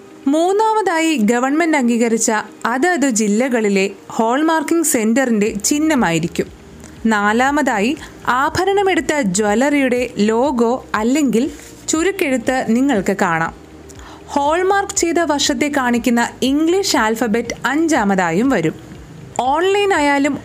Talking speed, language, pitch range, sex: 75 wpm, Malayalam, 220-315 Hz, female